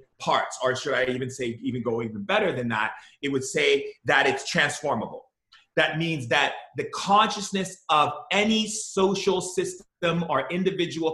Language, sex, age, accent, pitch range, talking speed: English, male, 30-49, American, 130-170 Hz, 155 wpm